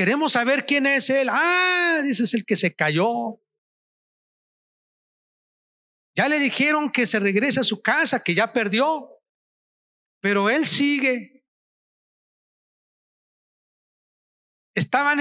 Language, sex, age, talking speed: Spanish, male, 40-59, 110 wpm